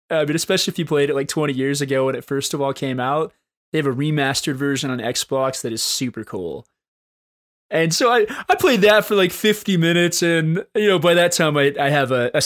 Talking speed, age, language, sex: 240 wpm, 20-39, English, male